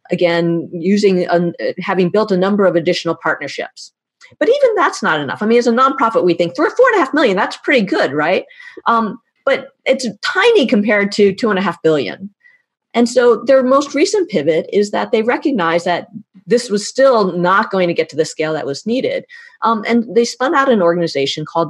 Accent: American